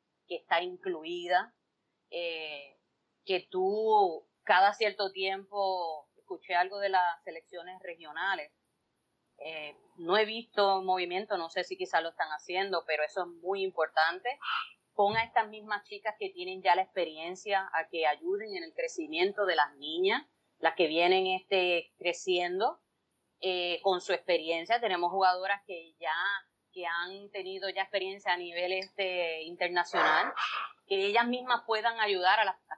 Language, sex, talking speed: Spanish, female, 145 wpm